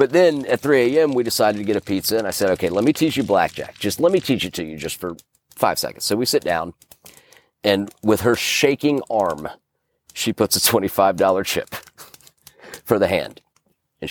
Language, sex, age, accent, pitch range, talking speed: English, male, 40-59, American, 100-145 Hz, 210 wpm